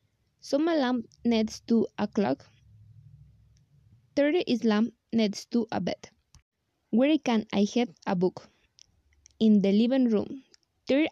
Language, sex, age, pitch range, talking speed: Spanish, female, 20-39, 205-245 Hz, 140 wpm